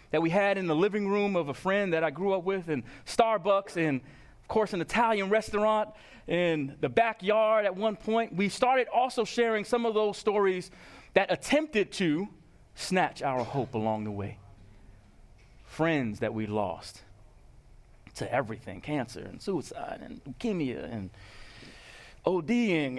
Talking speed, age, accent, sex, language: 155 wpm, 30-49, American, male, English